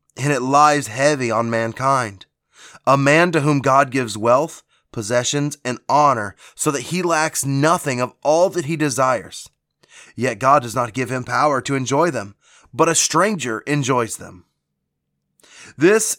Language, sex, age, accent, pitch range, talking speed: English, male, 20-39, American, 130-160 Hz, 155 wpm